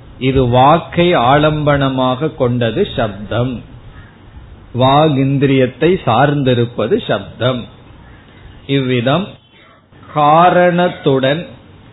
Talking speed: 50 wpm